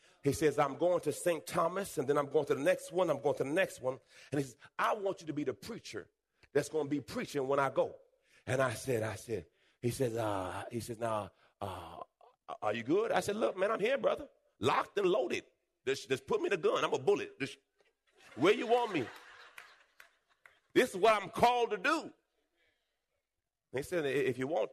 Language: English